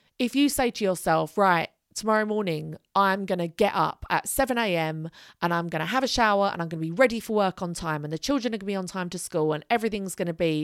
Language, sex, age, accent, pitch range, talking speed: English, female, 30-49, British, 165-230 Hz, 270 wpm